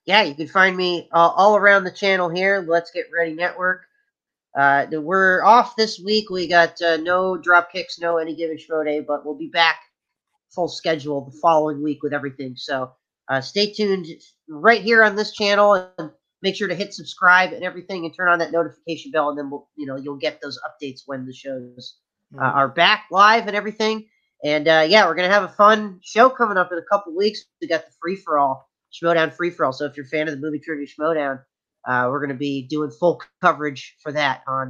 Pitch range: 150-210 Hz